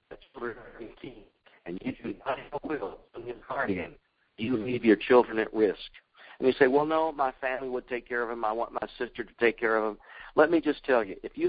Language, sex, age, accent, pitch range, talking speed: English, male, 50-69, American, 115-140 Hz, 225 wpm